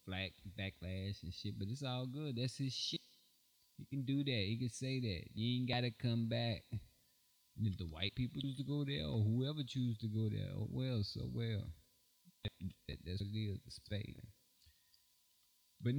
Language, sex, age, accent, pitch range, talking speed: English, male, 20-39, American, 105-130 Hz, 195 wpm